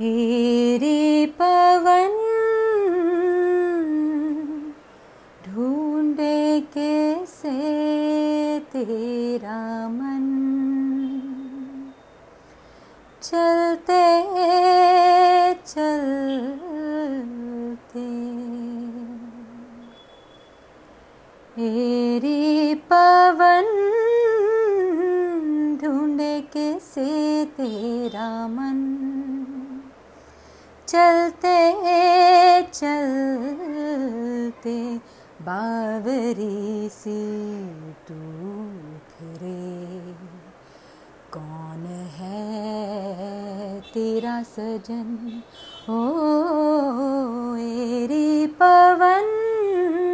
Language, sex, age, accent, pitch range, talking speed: Hindi, female, 30-49, native, 235-330 Hz, 30 wpm